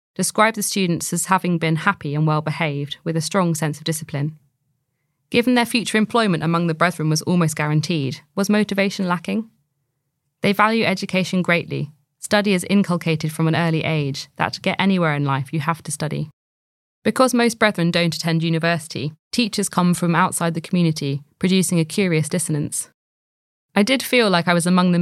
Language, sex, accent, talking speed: English, female, British, 175 wpm